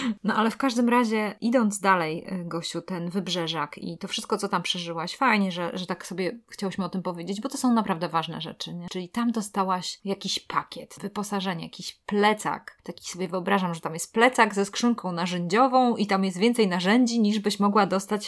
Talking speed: 195 wpm